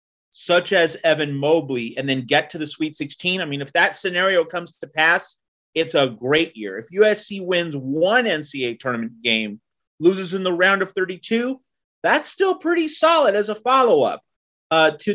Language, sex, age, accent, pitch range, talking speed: English, male, 30-49, American, 140-180 Hz, 175 wpm